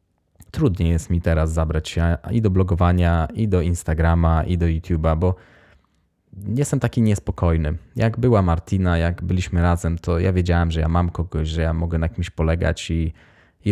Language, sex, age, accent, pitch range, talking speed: Polish, male, 20-39, native, 80-100 Hz, 175 wpm